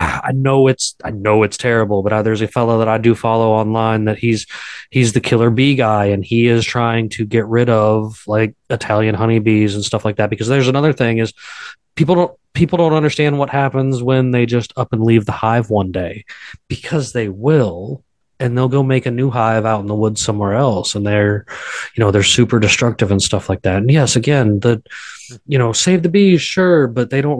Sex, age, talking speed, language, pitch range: male, 20-39, 220 wpm, English, 105-130 Hz